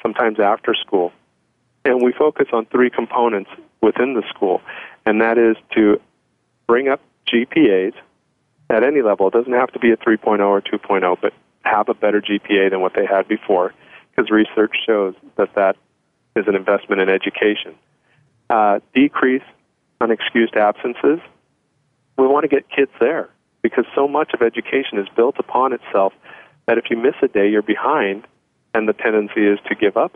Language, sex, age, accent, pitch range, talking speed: English, male, 40-59, American, 105-125 Hz, 170 wpm